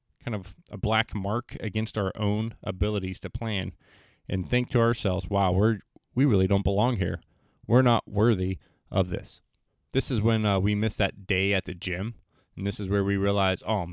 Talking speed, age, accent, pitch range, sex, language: 195 wpm, 20-39, American, 95-115 Hz, male, English